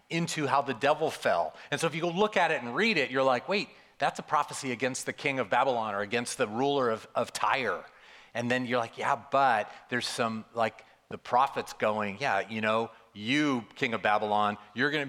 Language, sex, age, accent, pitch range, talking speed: English, male, 40-59, American, 110-135 Hz, 220 wpm